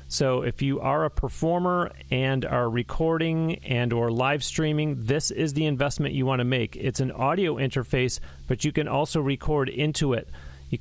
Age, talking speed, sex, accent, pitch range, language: 40-59, 185 wpm, male, American, 125-150 Hz, English